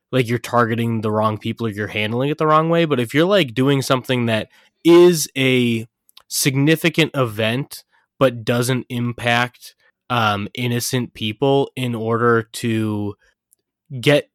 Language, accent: English, American